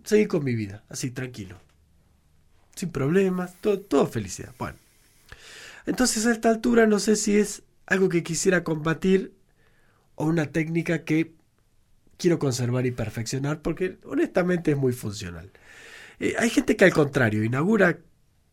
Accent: Argentinian